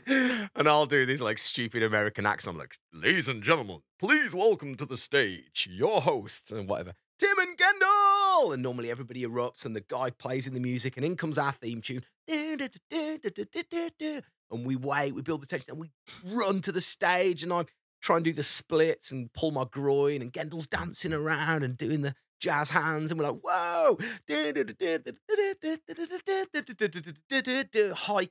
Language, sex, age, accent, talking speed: English, male, 30-49, British, 170 wpm